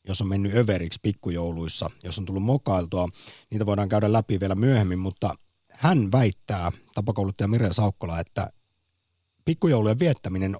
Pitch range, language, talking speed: 90-120 Hz, Finnish, 135 wpm